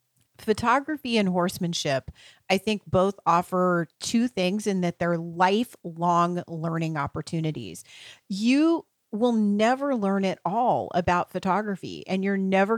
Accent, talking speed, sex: American, 120 wpm, female